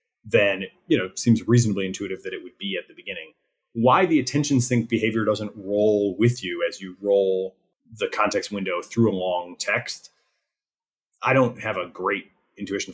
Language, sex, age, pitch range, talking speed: English, male, 30-49, 105-160 Hz, 180 wpm